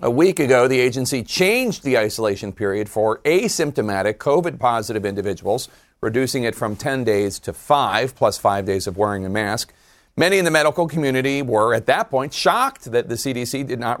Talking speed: 185 wpm